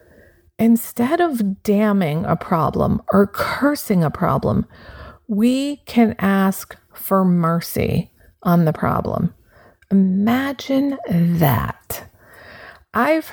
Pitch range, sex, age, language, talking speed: 170-210 Hz, female, 30-49, English, 90 wpm